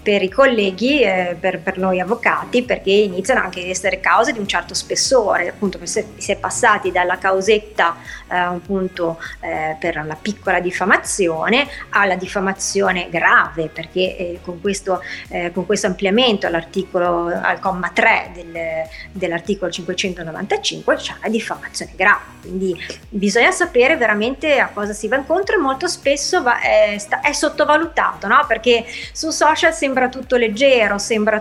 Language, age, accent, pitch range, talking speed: Italian, 30-49, native, 190-245 Hz, 150 wpm